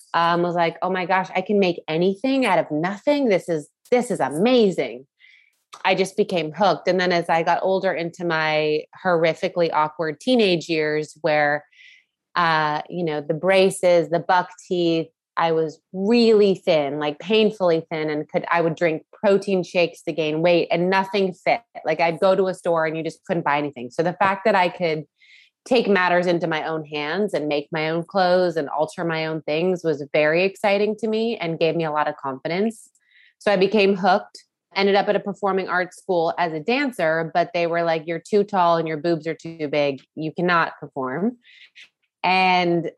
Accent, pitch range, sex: American, 160-190 Hz, female